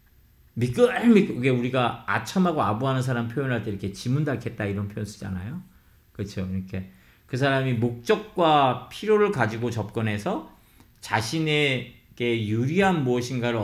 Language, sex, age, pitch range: Korean, male, 40-59, 105-140 Hz